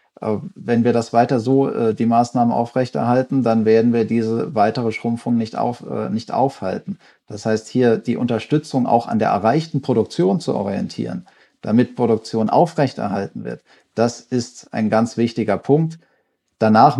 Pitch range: 105-125 Hz